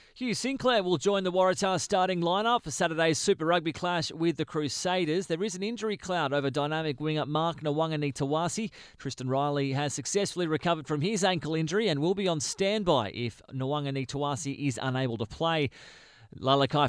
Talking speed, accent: 165 wpm, Australian